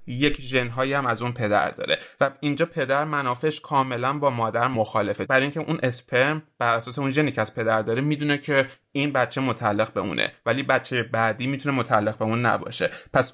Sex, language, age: male, Persian, 30-49